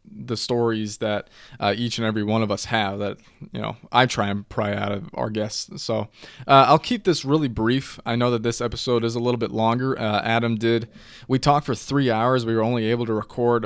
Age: 20-39